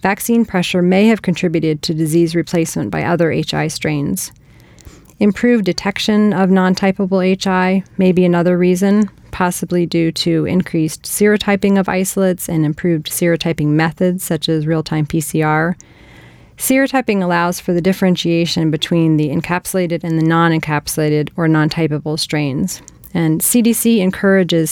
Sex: female